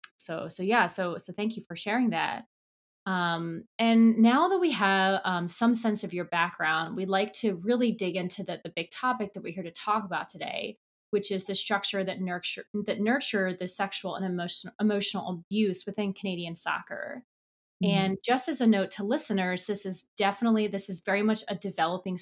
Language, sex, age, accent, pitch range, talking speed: English, female, 20-39, American, 180-210 Hz, 195 wpm